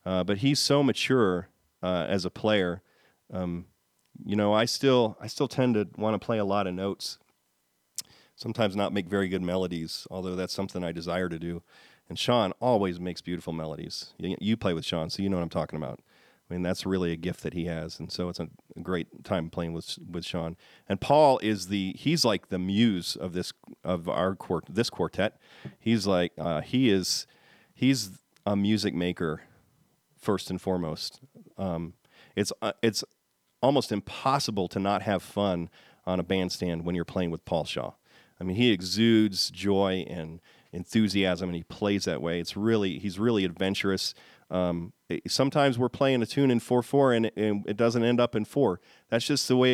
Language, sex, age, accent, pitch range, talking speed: English, male, 40-59, American, 90-110 Hz, 190 wpm